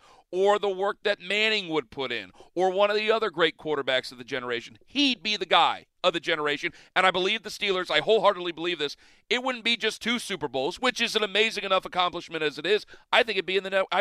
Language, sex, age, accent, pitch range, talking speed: English, male, 40-59, American, 160-210 Hz, 240 wpm